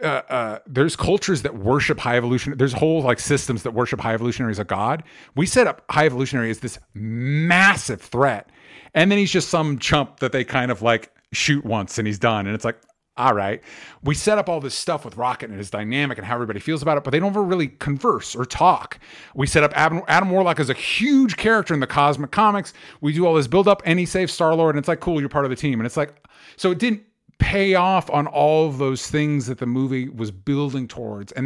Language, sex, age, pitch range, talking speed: English, male, 40-59, 125-165 Hz, 245 wpm